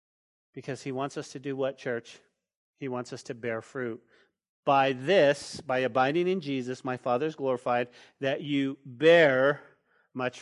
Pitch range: 130-165 Hz